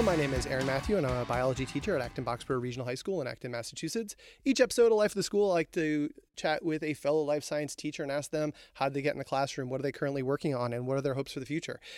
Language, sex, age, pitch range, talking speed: English, male, 30-49, 135-165 Hz, 290 wpm